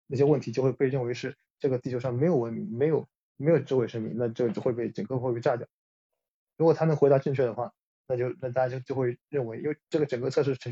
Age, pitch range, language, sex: 20-39, 130-155 Hz, Chinese, male